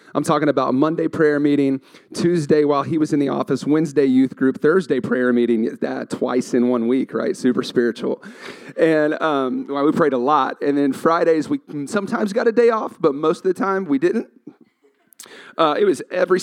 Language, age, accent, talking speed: English, 30-49, American, 195 wpm